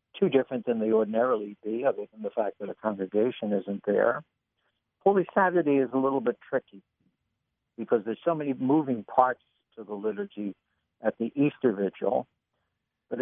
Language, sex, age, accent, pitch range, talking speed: English, male, 60-79, American, 105-135 Hz, 165 wpm